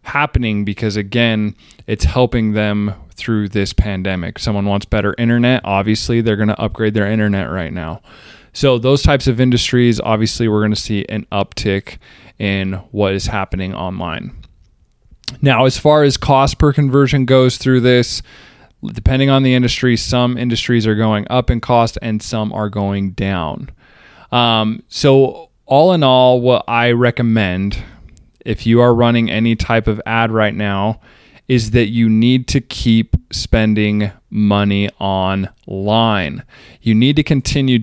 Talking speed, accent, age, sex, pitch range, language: 150 wpm, American, 20-39, male, 105-120 Hz, English